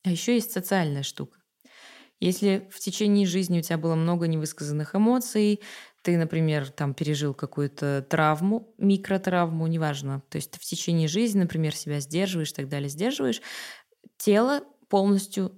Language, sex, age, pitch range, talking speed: Russian, female, 20-39, 155-195 Hz, 145 wpm